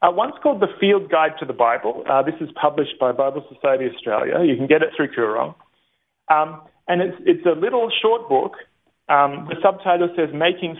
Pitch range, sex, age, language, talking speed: 140-175 Hz, male, 30-49, English, 200 wpm